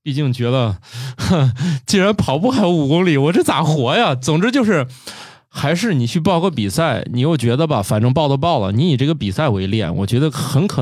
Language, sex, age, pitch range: Chinese, male, 20-39, 115-150 Hz